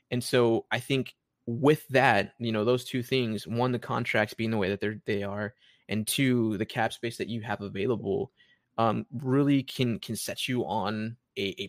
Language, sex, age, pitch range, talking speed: English, male, 20-39, 110-130 Hz, 200 wpm